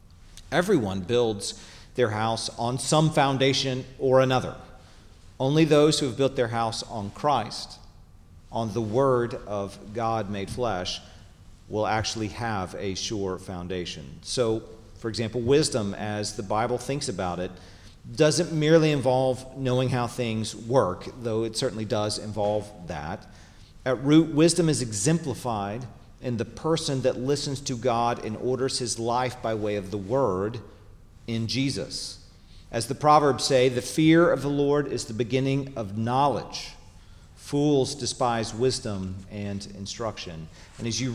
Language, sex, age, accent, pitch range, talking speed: English, male, 40-59, American, 100-135 Hz, 145 wpm